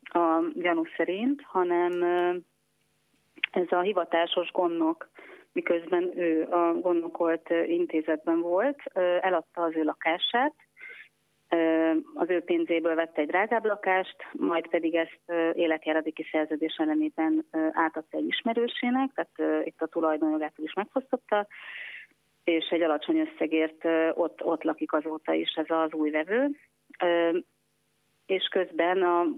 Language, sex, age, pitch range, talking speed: Hungarian, female, 30-49, 160-190 Hz, 115 wpm